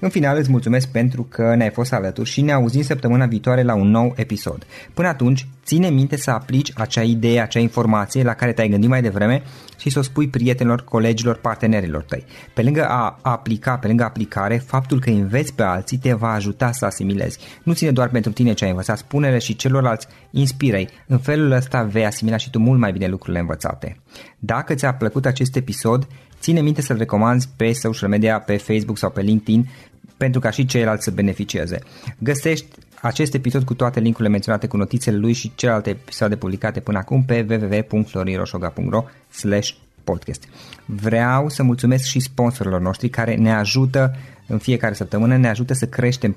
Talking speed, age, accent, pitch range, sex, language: 180 wpm, 20-39, native, 105-130 Hz, male, Romanian